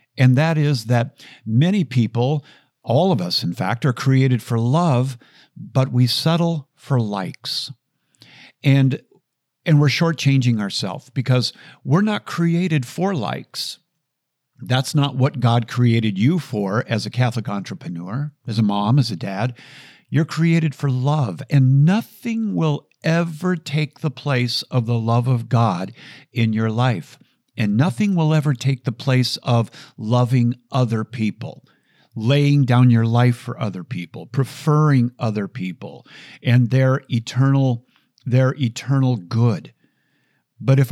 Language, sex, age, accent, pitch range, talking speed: English, male, 50-69, American, 120-145 Hz, 140 wpm